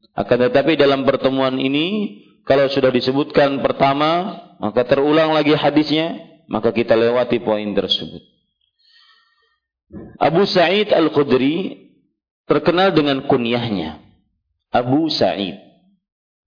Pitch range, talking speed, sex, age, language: 115-150 Hz, 95 wpm, male, 40-59, Malay